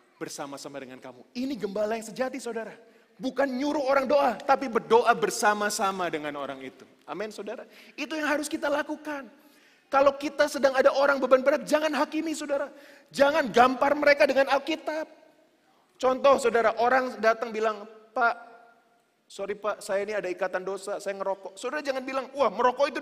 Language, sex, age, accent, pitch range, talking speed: Indonesian, male, 30-49, native, 225-295 Hz, 160 wpm